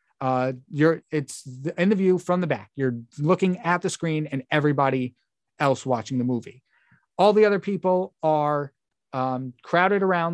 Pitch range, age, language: 125-170 Hz, 30-49, English